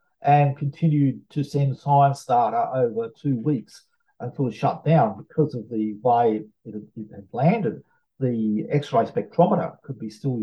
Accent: Australian